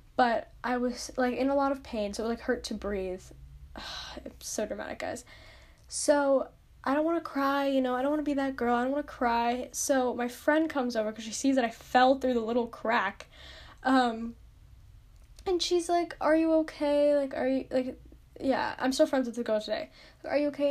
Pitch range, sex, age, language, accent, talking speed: 240-300 Hz, female, 10-29, English, American, 225 wpm